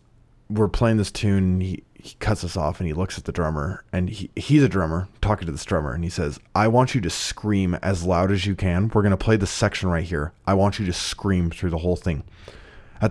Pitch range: 85-105 Hz